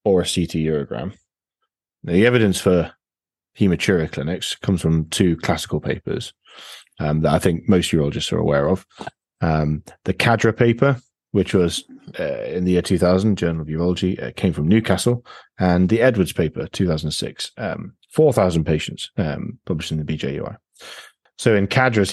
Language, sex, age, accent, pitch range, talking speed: English, male, 30-49, British, 80-100 Hz, 170 wpm